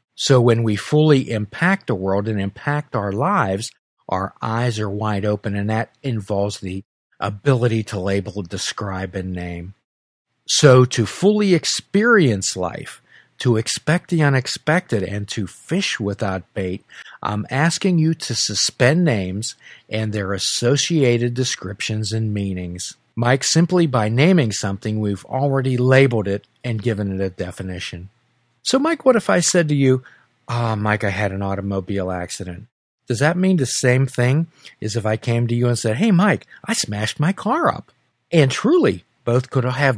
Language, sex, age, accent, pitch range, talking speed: English, male, 50-69, American, 105-150 Hz, 160 wpm